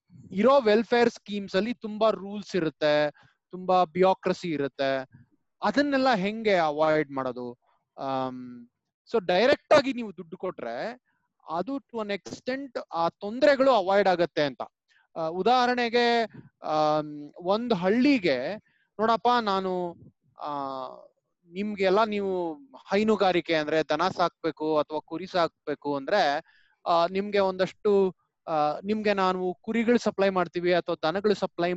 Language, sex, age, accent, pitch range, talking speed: Kannada, male, 20-39, native, 170-230 Hz, 100 wpm